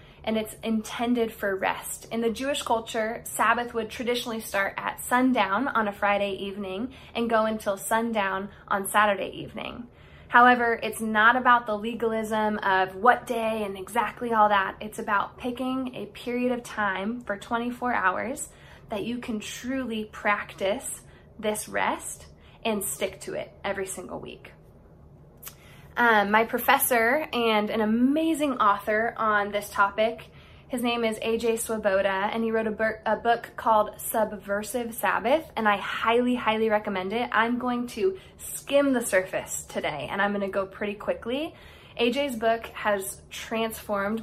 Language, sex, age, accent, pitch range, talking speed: English, female, 20-39, American, 205-240 Hz, 150 wpm